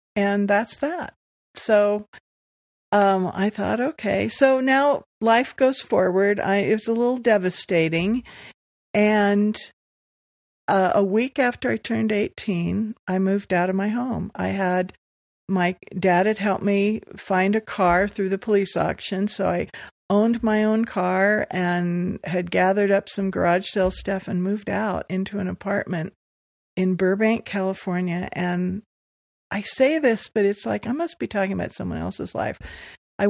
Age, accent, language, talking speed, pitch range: 50-69, American, English, 155 wpm, 180-215 Hz